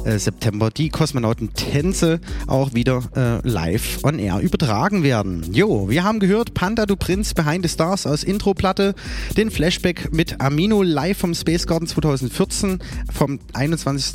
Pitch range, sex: 120-170 Hz, male